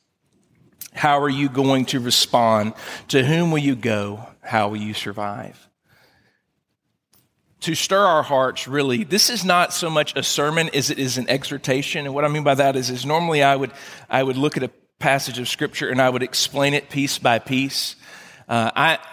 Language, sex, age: English, male, 40-59